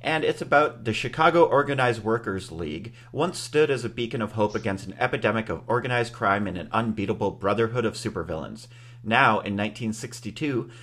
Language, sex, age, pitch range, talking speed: English, male, 40-59, 100-120 Hz, 165 wpm